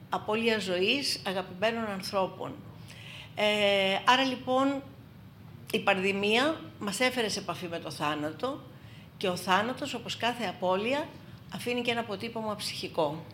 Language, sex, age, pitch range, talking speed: Greek, female, 50-69, 155-225 Hz, 120 wpm